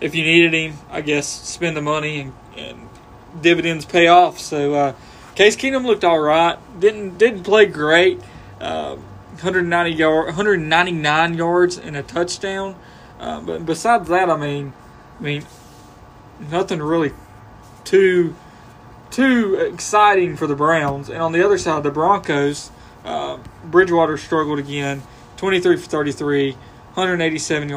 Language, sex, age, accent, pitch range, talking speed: English, male, 20-39, American, 145-175 Hz, 140 wpm